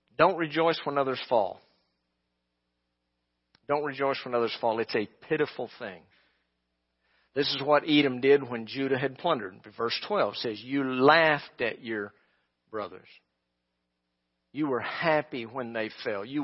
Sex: male